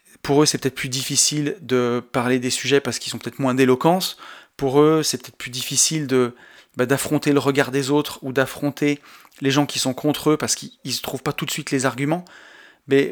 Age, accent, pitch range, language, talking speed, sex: 30-49, French, 130-150 Hz, French, 220 wpm, male